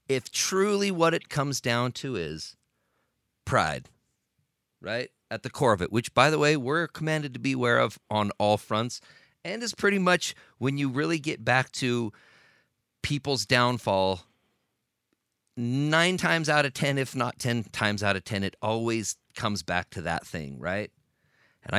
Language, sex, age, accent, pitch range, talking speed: English, male, 40-59, American, 100-140 Hz, 170 wpm